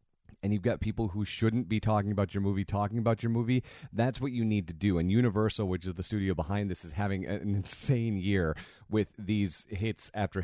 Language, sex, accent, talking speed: English, male, American, 220 wpm